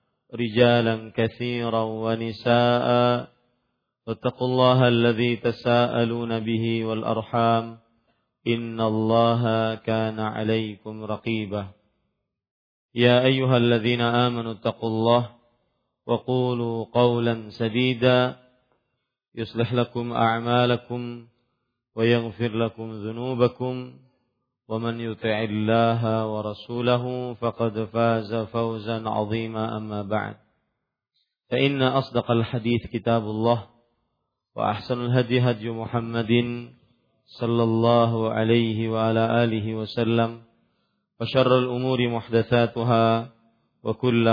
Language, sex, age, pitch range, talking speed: Malay, male, 40-59, 110-120 Hz, 80 wpm